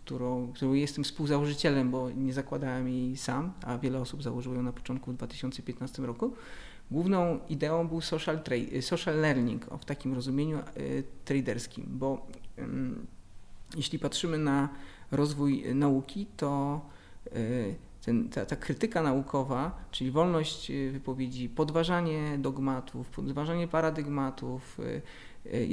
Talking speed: 125 wpm